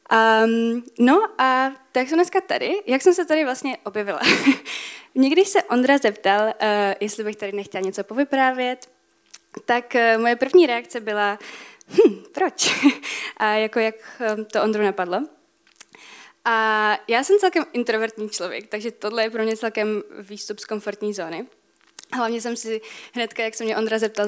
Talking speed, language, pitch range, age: 155 wpm, Czech, 200-260 Hz, 20-39